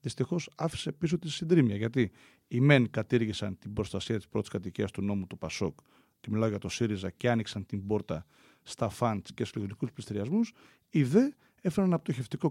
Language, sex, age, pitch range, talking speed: Greek, male, 40-59, 105-140 Hz, 180 wpm